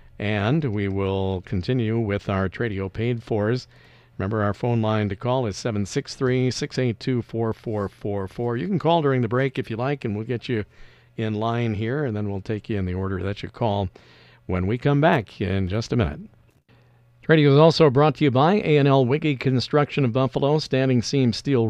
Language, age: English, 50-69